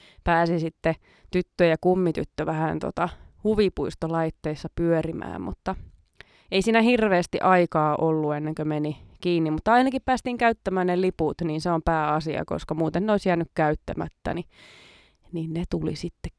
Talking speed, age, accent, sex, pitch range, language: 145 wpm, 20-39, native, female, 160-200 Hz, Finnish